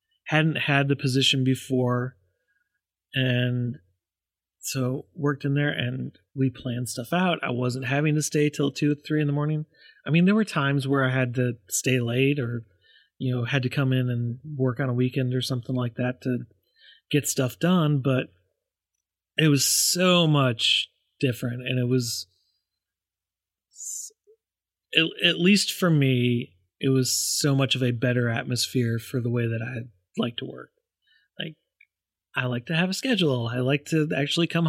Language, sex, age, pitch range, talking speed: English, male, 30-49, 125-155 Hz, 175 wpm